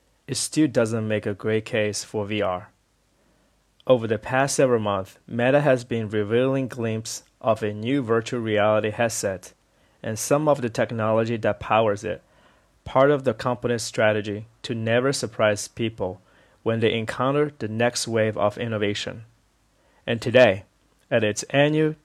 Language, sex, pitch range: Chinese, male, 105-125 Hz